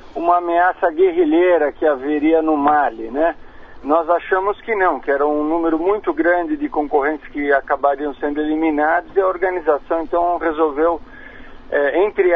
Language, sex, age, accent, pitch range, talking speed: Portuguese, male, 50-69, Brazilian, 155-205 Hz, 150 wpm